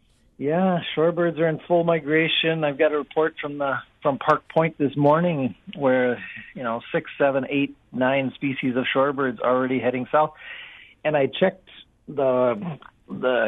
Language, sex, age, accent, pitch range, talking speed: English, male, 50-69, American, 125-150 Hz, 160 wpm